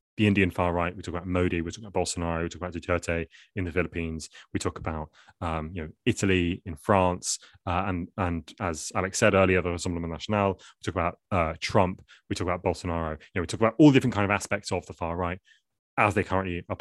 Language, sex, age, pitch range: English, male, 20-39, 85-110 Hz